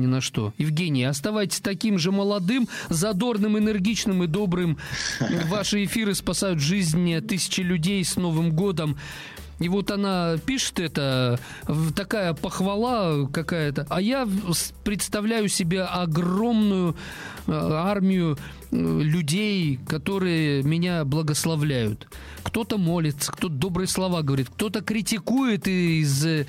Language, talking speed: Russian, 110 wpm